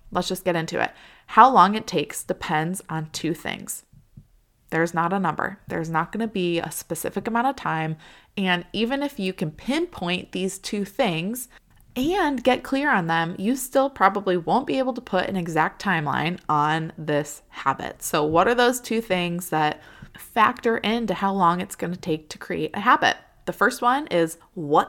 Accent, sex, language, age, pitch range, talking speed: American, female, English, 20-39, 165-210 Hz, 190 wpm